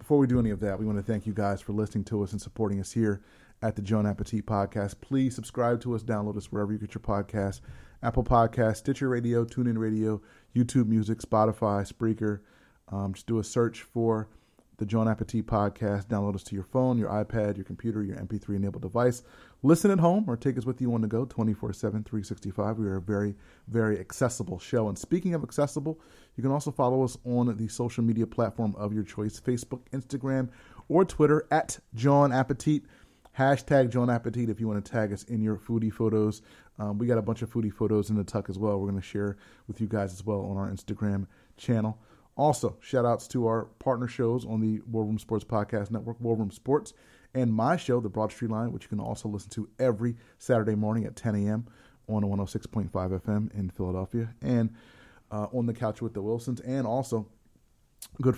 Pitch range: 105-120 Hz